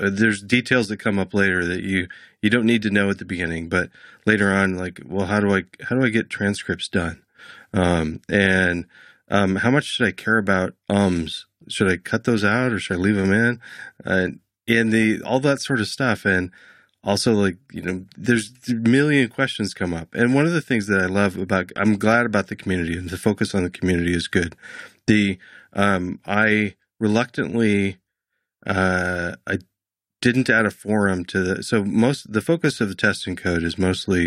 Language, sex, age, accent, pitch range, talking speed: English, male, 30-49, American, 90-110 Hz, 200 wpm